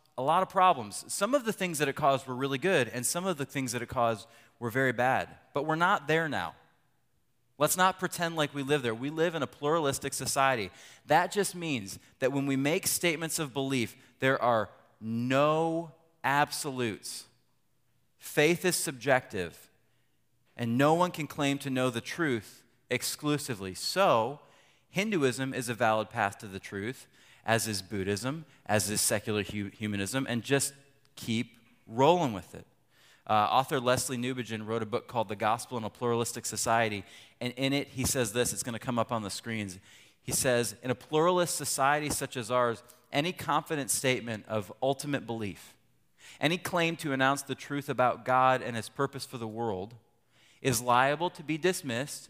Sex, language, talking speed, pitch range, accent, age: male, English, 175 wpm, 115-145 Hz, American, 30-49